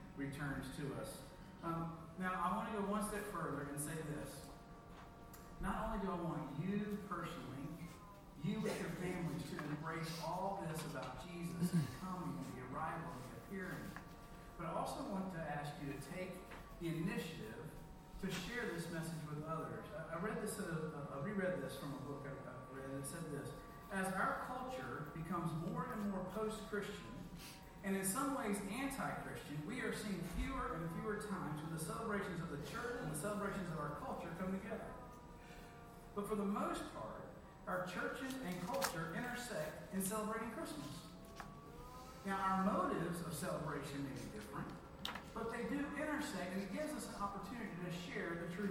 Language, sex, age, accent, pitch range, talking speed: English, male, 50-69, American, 160-210 Hz, 170 wpm